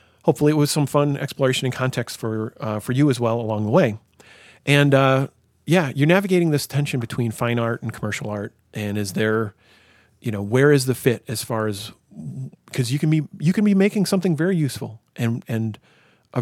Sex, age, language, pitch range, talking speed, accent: male, 40-59, English, 110-145 Hz, 205 wpm, American